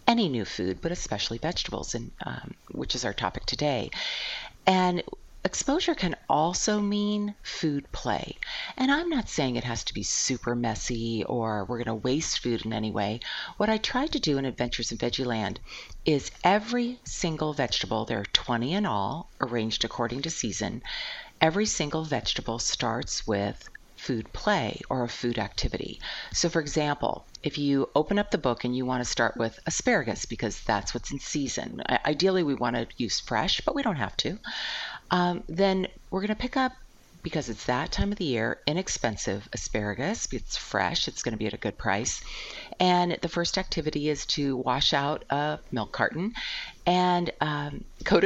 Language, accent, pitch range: English, American, 120-195 Hz